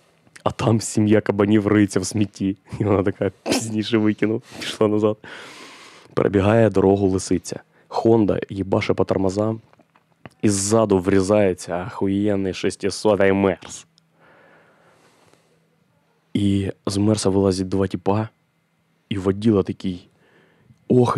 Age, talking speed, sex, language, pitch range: 20-39, 105 wpm, male, Ukrainian, 100-110 Hz